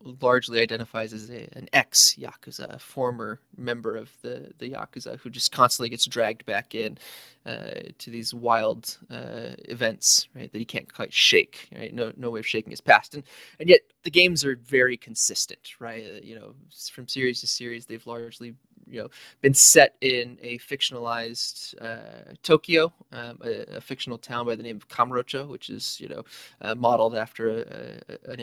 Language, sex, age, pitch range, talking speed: English, male, 20-39, 115-140 Hz, 185 wpm